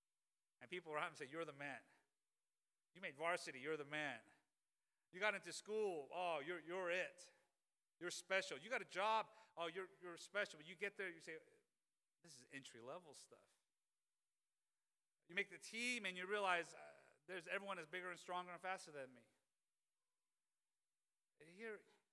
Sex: male